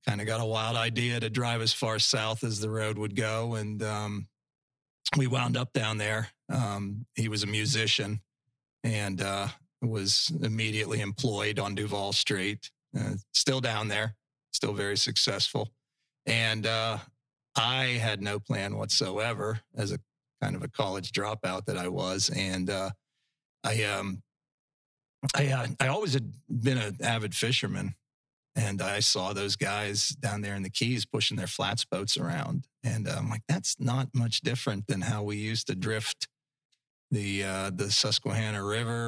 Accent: American